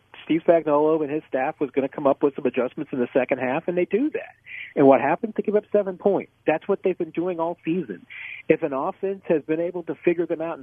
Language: English